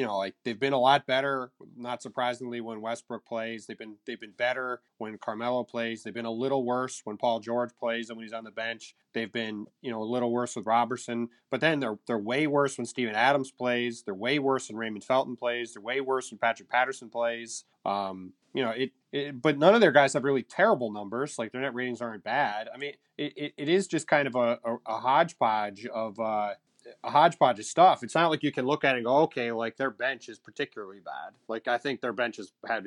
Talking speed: 240 wpm